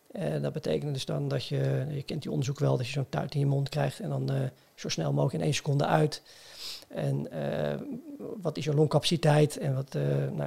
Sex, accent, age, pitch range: male, Dutch, 40-59, 140-185 Hz